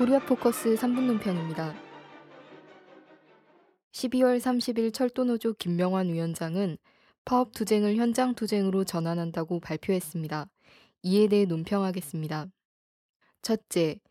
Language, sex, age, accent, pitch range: Korean, female, 20-39, native, 175-225 Hz